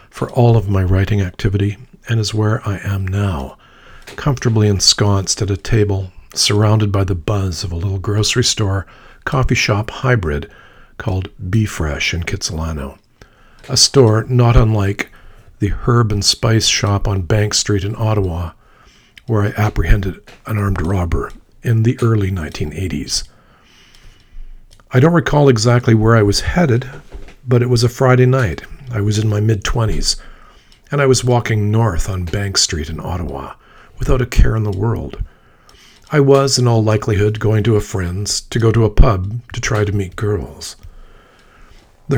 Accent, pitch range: American, 100-120 Hz